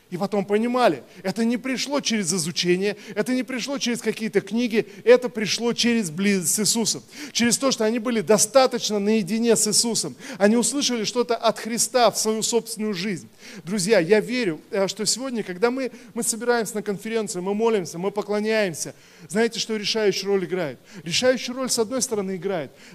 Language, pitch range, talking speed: Russian, 195-235 Hz, 165 wpm